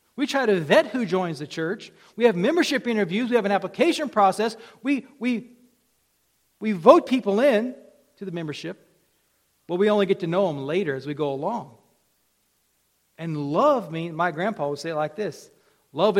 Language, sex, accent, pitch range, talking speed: English, male, American, 175-240 Hz, 180 wpm